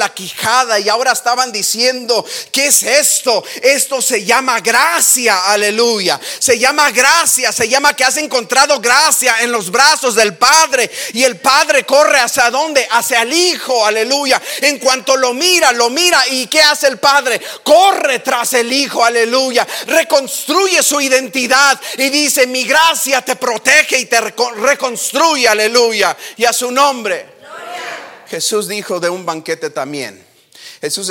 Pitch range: 195-265 Hz